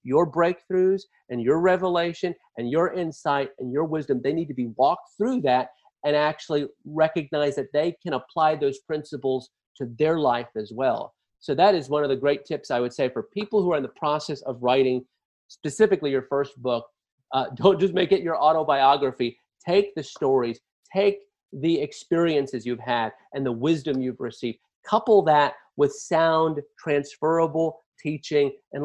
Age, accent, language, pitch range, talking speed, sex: 40-59, American, English, 130-165 Hz, 175 wpm, male